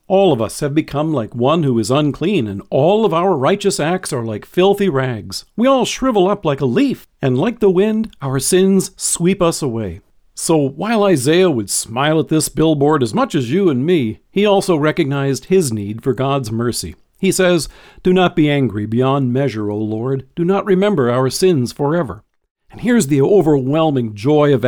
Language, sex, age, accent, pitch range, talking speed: English, male, 50-69, American, 130-190 Hz, 195 wpm